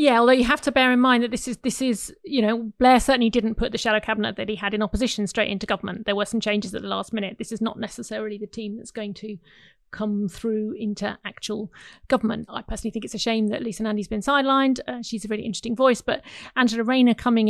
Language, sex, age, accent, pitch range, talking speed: English, female, 40-59, British, 210-235 Hz, 250 wpm